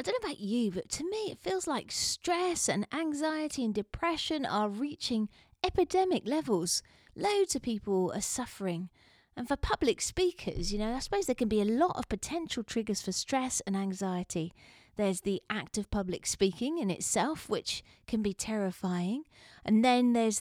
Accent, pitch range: British, 190-260 Hz